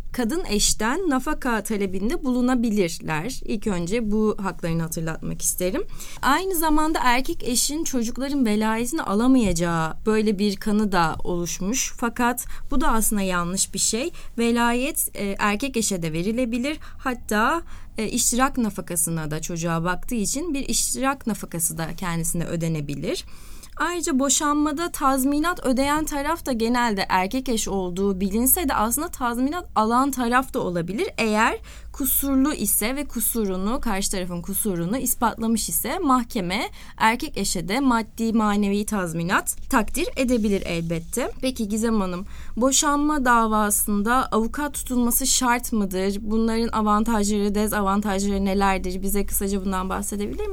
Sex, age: female, 20-39